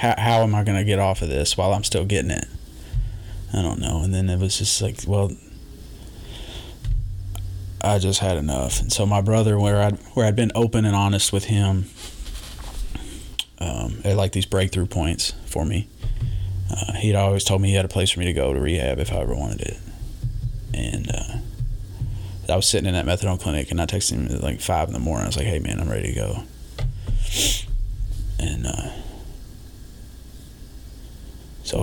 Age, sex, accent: 20-39, male, American